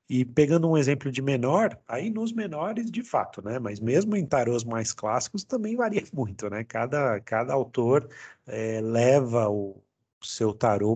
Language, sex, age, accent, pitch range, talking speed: Portuguese, male, 40-59, Brazilian, 105-130 Hz, 160 wpm